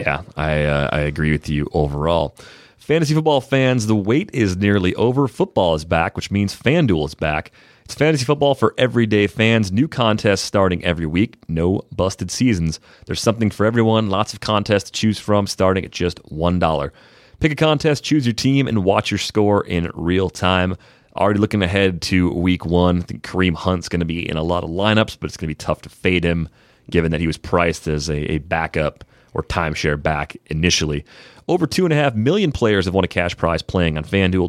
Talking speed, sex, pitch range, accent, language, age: 205 wpm, male, 85-110 Hz, American, English, 30-49